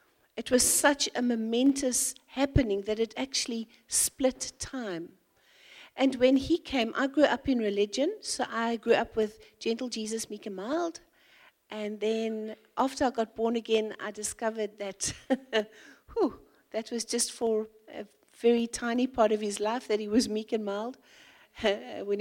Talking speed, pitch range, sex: 155 wpm, 220-275 Hz, female